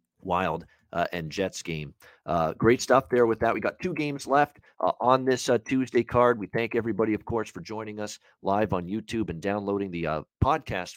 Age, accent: 40-59, American